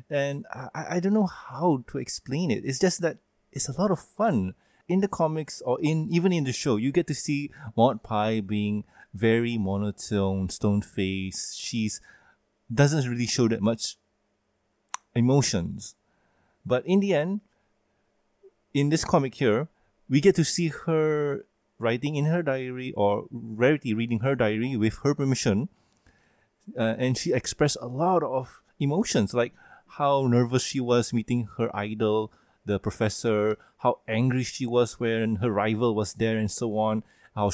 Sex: male